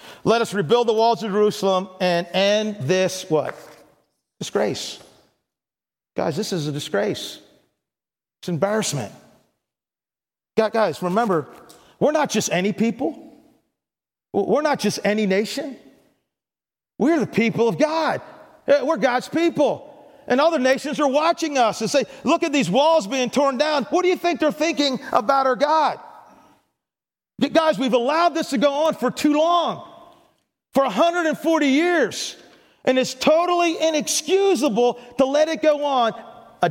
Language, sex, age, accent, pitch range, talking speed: English, male, 40-59, American, 195-290 Hz, 140 wpm